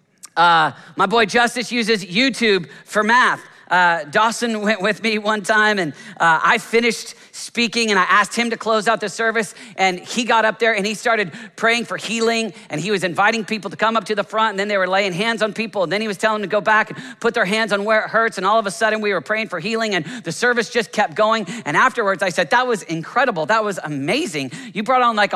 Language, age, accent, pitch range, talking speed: English, 40-59, American, 200-235 Hz, 250 wpm